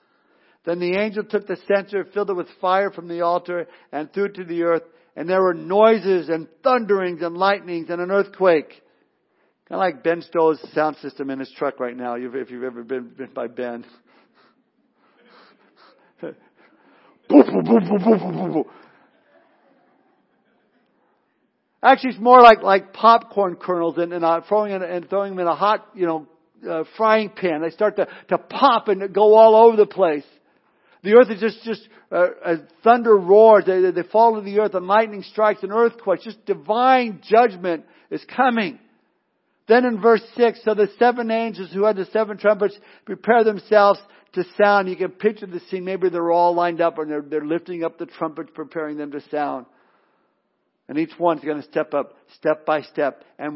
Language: English